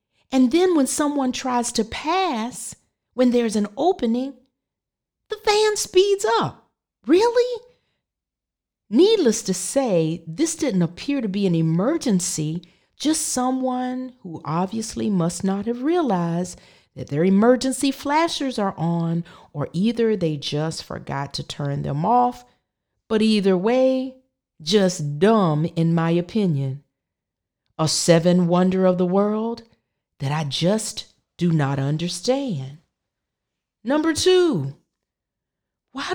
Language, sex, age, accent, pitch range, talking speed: English, female, 40-59, American, 170-270 Hz, 120 wpm